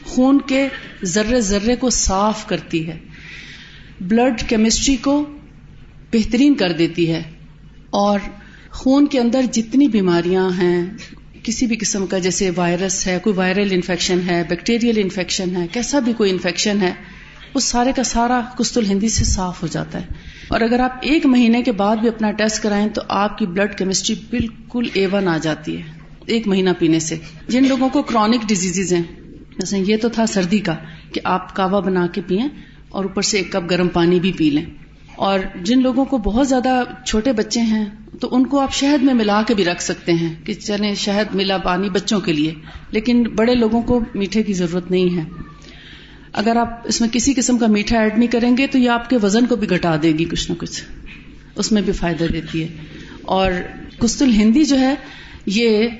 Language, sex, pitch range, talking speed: Urdu, female, 185-245 Hz, 195 wpm